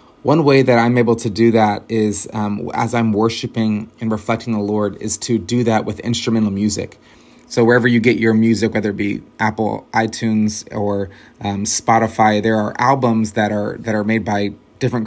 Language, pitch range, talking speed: English, 105-120 Hz, 190 wpm